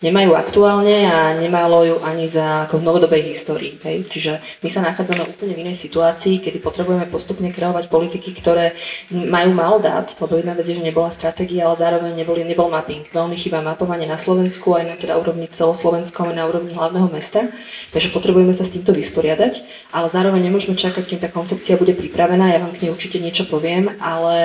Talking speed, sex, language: 190 wpm, female, Slovak